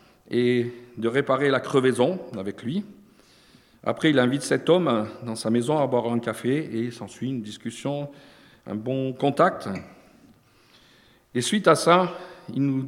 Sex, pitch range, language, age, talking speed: male, 120-155 Hz, French, 50-69, 150 wpm